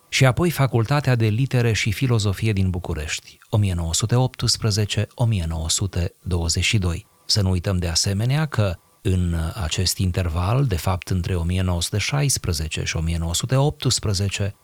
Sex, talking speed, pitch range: male, 105 wpm, 90-115 Hz